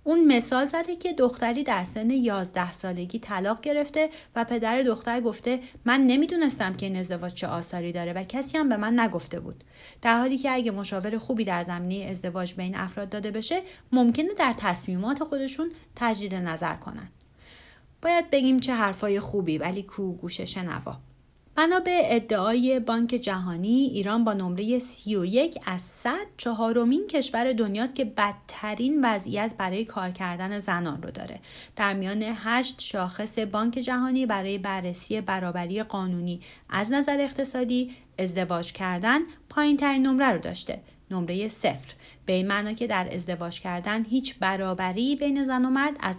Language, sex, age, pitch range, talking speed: English, female, 30-49, 190-255 Hz, 155 wpm